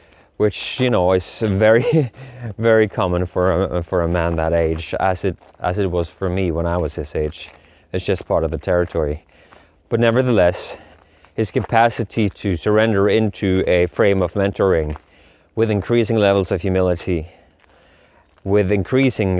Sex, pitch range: male, 90-105 Hz